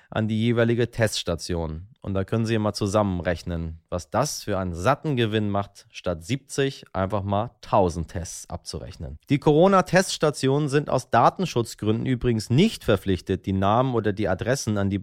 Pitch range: 100-145 Hz